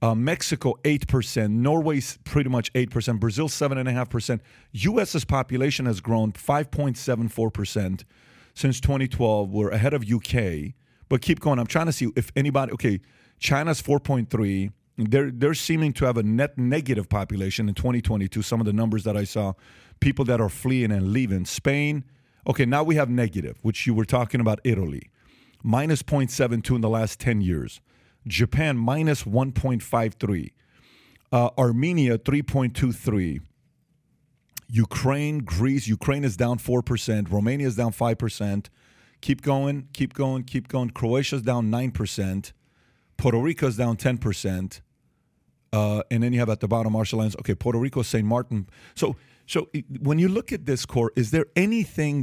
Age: 40-59